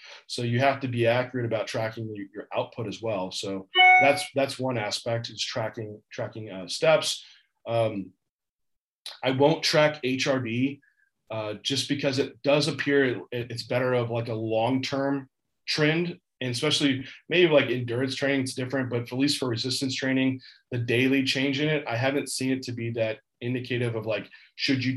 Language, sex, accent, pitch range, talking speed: English, male, American, 115-140 Hz, 175 wpm